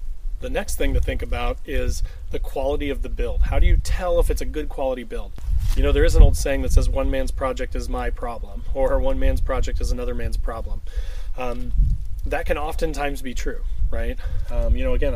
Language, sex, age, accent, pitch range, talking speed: English, male, 30-49, American, 80-130 Hz, 220 wpm